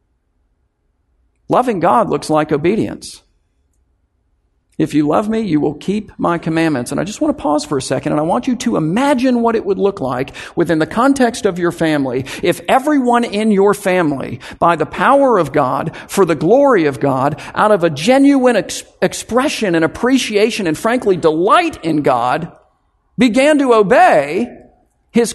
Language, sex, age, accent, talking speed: English, male, 50-69, American, 170 wpm